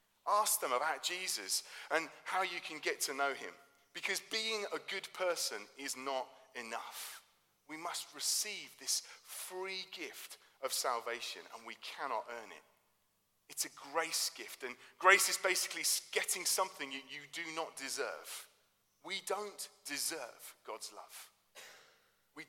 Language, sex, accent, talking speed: English, male, British, 140 wpm